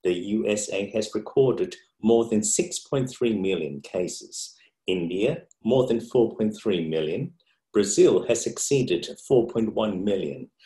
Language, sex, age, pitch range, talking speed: English, male, 50-69, 100-125 Hz, 105 wpm